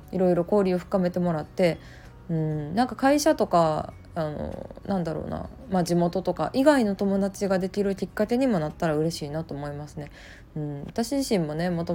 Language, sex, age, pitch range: Japanese, female, 20-39, 150-195 Hz